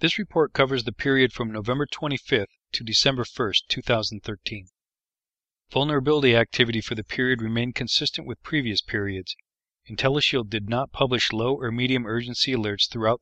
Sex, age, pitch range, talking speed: male, 40-59, 110-135 Hz, 150 wpm